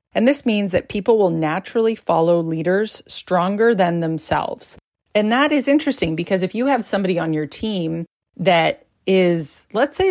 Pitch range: 165-200 Hz